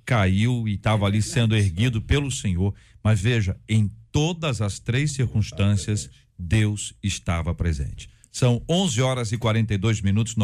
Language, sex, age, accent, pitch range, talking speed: Portuguese, male, 50-69, Brazilian, 105-125 Hz, 145 wpm